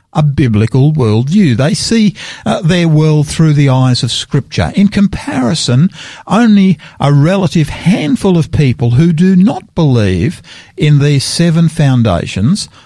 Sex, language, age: male, English, 50-69